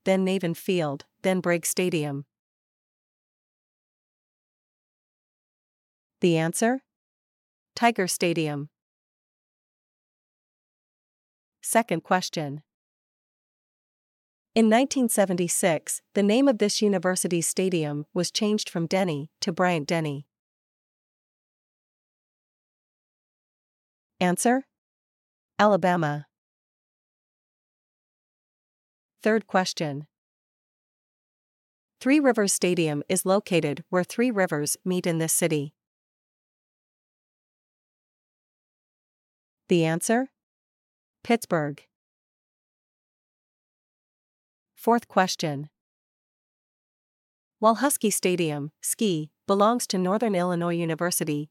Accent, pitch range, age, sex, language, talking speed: American, 155-205 Hz, 40-59, female, English, 65 wpm